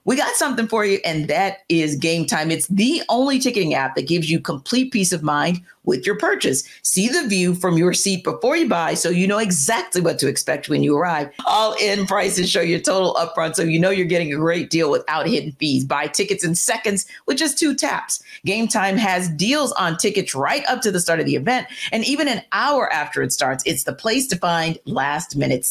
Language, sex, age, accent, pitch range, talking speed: English, female, 40-59, American, 165-230 Hz, 225 wpm